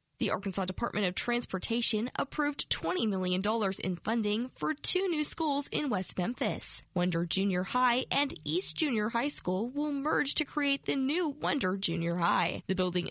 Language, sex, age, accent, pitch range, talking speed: English, female, 10-29, American, 185-245 Hz, 165 wpm